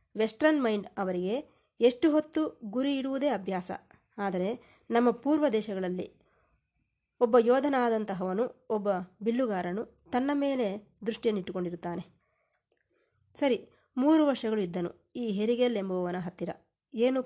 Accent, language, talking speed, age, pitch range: native, Kannada, 95 wpm, 20-39, 190-250 Hz